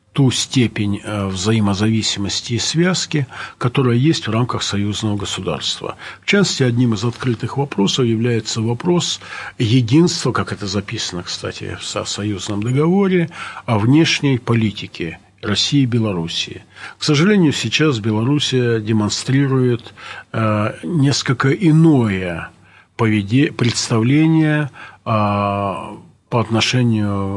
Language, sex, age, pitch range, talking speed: Russian, male, 50-69, 105-135 Hz, 95 wpm